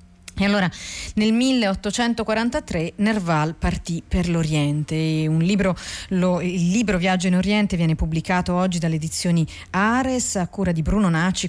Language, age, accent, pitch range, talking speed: Italian, 40-59, native, 165-215 Hz, 140 wpm